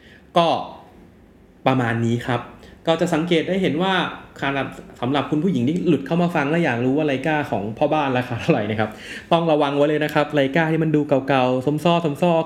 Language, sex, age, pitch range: Thai, male, 20-39, 120-155 Hz